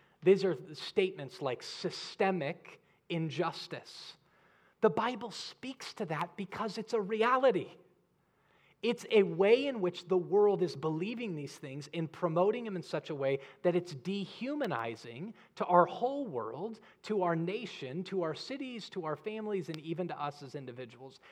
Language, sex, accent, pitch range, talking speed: English, male, American, 150-215 Hz, 155 wpm